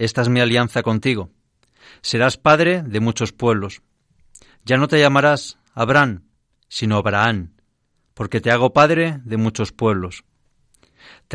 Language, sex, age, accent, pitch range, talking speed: Spanish, male, 40-59, Spanish, 120-195 Hz, 130 wpm